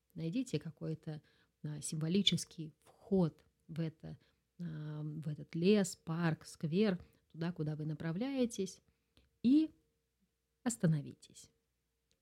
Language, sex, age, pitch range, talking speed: Russian, female, 30-49, 150-195 Hz, 80 wpm